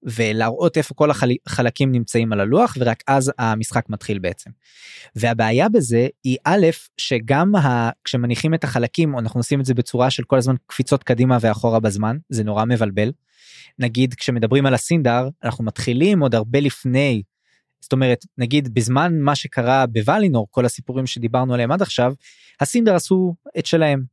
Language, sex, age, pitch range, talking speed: Hebrew, male, 20-39, 115-140 Hz, 155 wpm